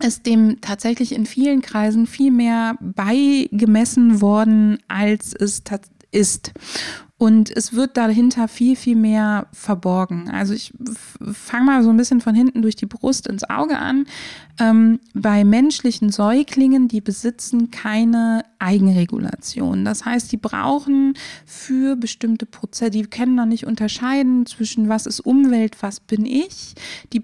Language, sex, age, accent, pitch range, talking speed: German, female, 20-39, German, 210-250 Hz, 145 wpm